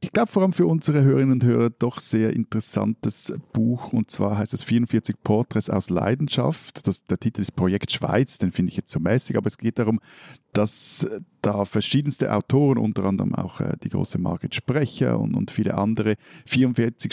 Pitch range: 95-125 Hz